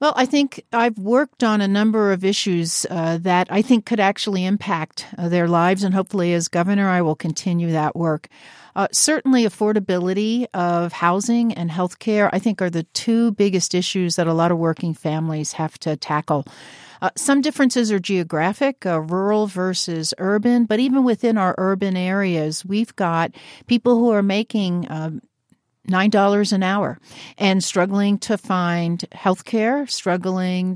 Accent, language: American, English